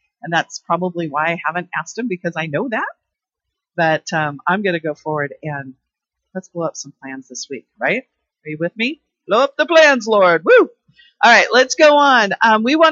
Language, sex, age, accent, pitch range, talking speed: English, female, 40-59, American, 165-235 Hz, 215 wpm